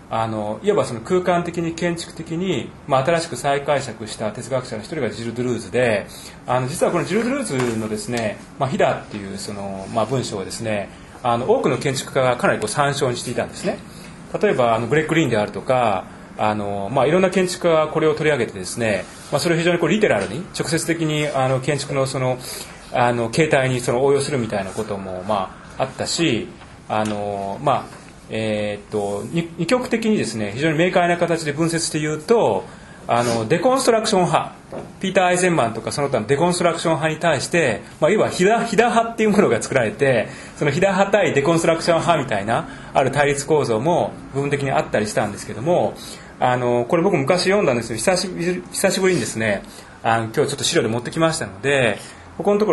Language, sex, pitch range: Japanese, male, 115-175 Hz